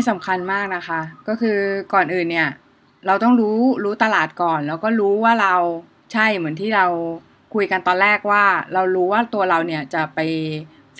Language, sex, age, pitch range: Thai, female, 20-39, 170-215 Hz